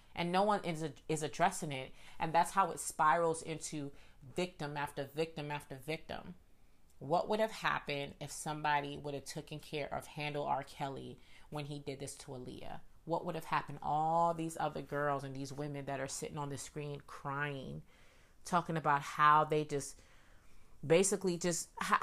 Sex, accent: female, American